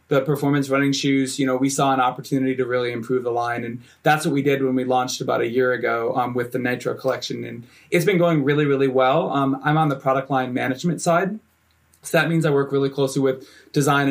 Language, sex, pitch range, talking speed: English, male, 125-140 Hz, 240 wpm